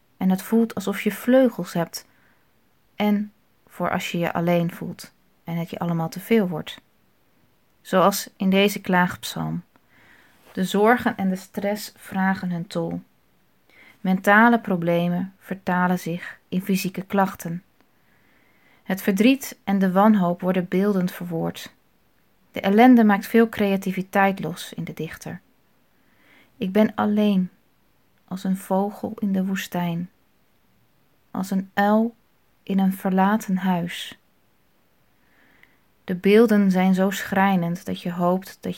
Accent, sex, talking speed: Dutch, female, 125 wpm